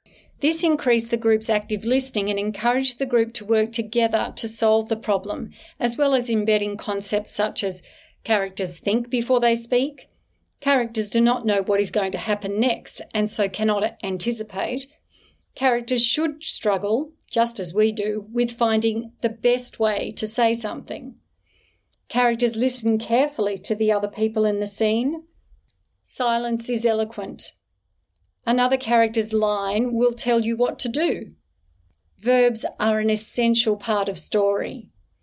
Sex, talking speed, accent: female, 150 wpm, Australian